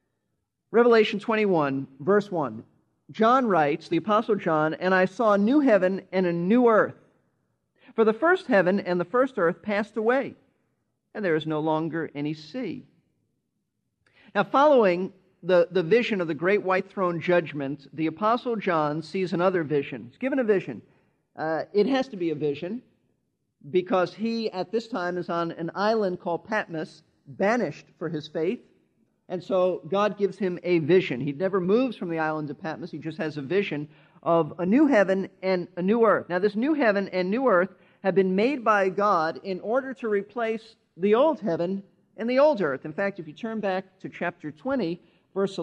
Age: 50-69